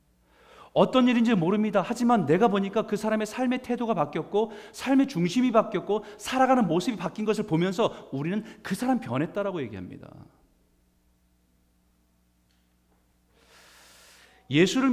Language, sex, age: Korean, male, 40-59